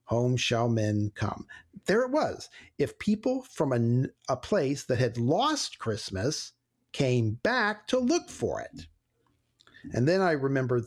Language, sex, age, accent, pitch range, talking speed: English, male, 50-69, American, 110-145 Hz, 150 wpm